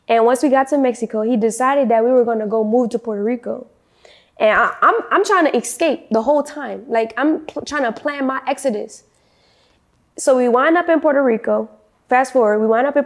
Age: 10-29